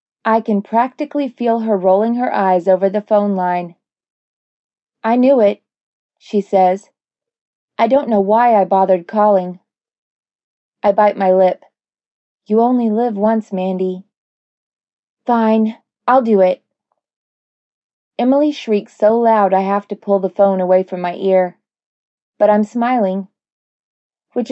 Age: 20-39